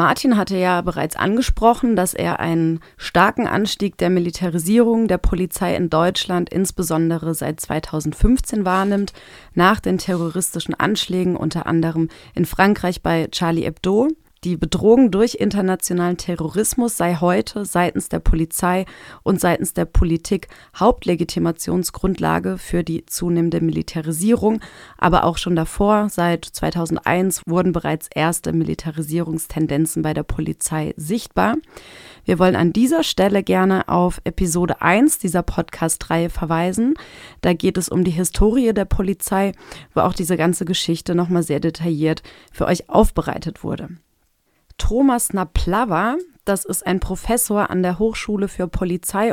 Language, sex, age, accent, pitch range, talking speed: German, female, 30-49, German, 165-200 Hz, 130 wpm